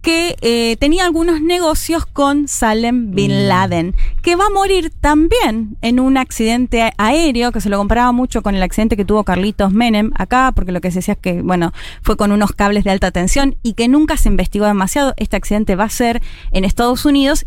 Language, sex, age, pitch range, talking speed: Spanish, female, 20-39, 195-265 Hz, 205 wpm